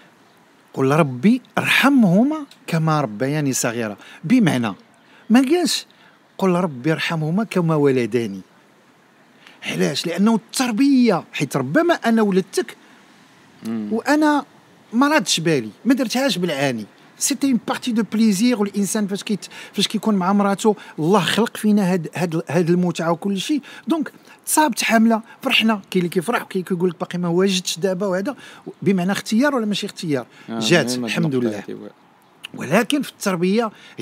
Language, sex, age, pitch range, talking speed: Arabic, male, 50-69, 140-225 Hz, 125 wpm